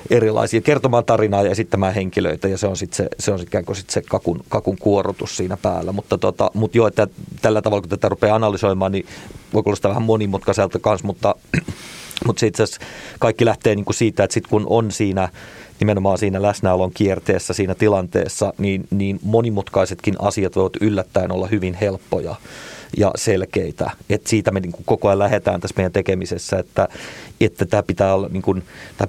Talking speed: 175 wpm